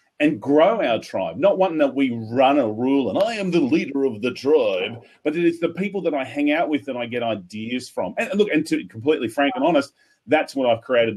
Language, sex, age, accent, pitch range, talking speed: English, male, 30-49, Australian, 125-205 Hz, 245 wpm